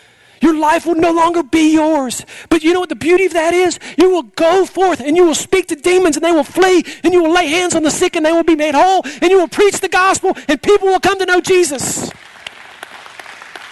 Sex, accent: male, American